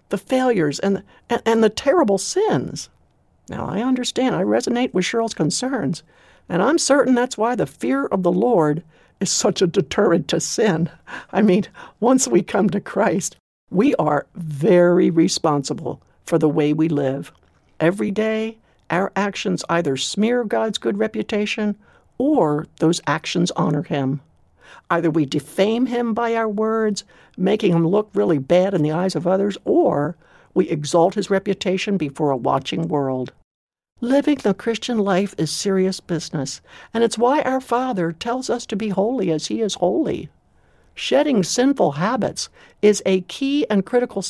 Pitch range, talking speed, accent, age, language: 165-235 Hz, 155 wpm, American, 60-79, English